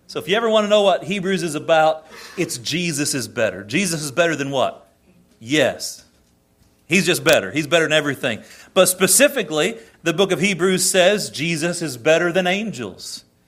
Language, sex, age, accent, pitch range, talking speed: English, male, 40-59, American, 165-205 Hz, 180 wpm